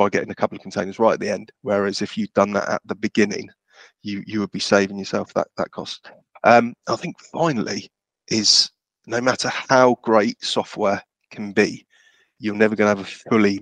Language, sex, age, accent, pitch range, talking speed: English, male, 30-49, British, 100-110 Hz, 205 wpm